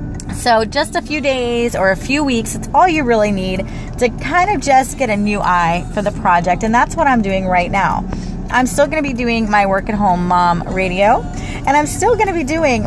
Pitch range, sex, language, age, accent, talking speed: 180-240 Hz, female, English, 30-49, American, 230 wpm